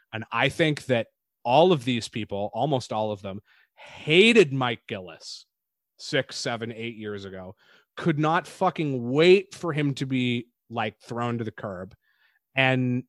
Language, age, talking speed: English, 20-39, 155 wpm